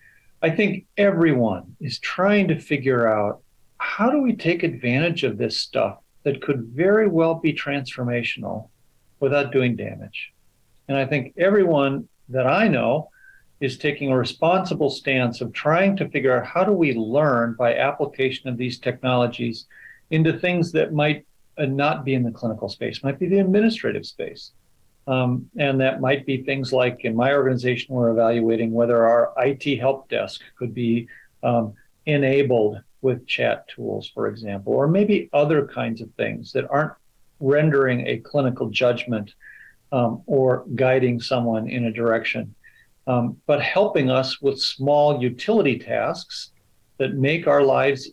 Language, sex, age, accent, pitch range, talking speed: English, male, 50-69, American, 120-145 Hz, 155 wpm